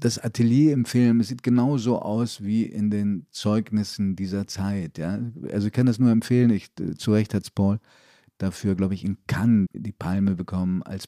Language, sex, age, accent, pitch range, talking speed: German, male, 50-69, German, 100-125 Hz, 185 wpm